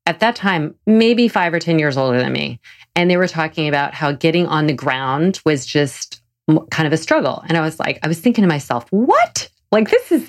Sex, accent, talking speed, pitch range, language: female, American, 235 wpm, 145-190 Hz, English